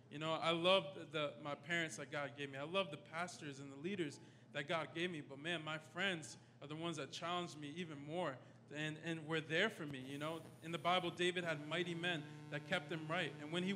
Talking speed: 240 wpm